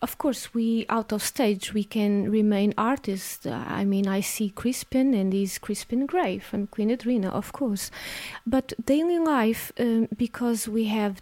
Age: 30-49